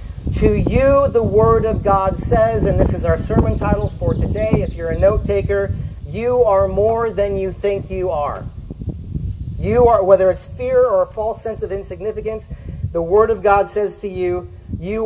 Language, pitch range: English, 150-210 Hz